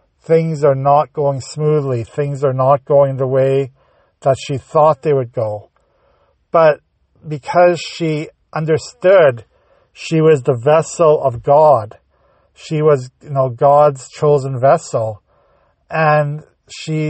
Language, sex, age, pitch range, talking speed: English, male, 50-69, 130-155 Hz, 125 wpm